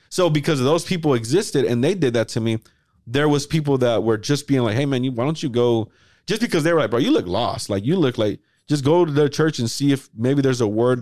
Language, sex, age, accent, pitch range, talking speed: English, male, 30-49, American, 115-145 Hz, 285 wpm